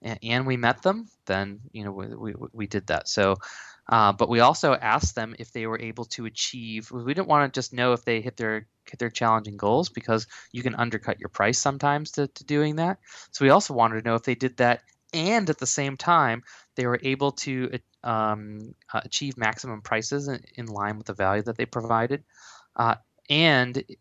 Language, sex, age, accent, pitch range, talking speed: English, male, 20-39, American, 105-125 Hz, 205 wpm